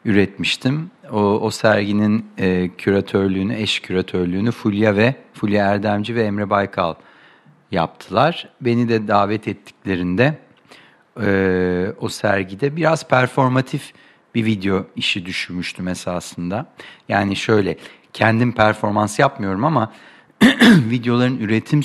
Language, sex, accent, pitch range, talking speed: Turkish, male, native, 95-120 Hz, 105 wpm